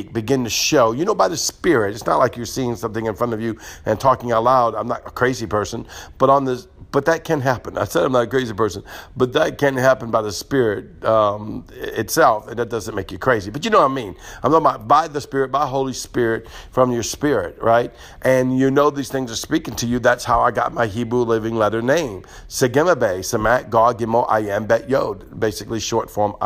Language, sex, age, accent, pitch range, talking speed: English, male, 50-69, American, 115-135 Hz, 235 wpm